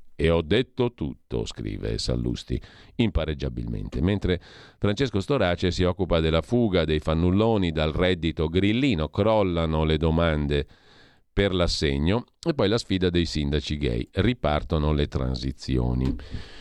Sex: male